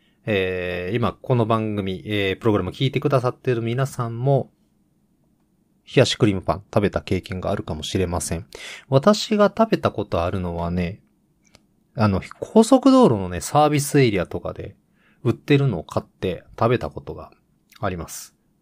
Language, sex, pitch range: Japanese, male, 95-150 Hz